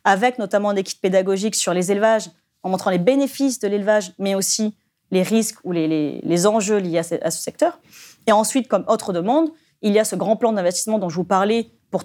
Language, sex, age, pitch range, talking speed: French, female, 30-49, 180-225 Hz, 230 wpm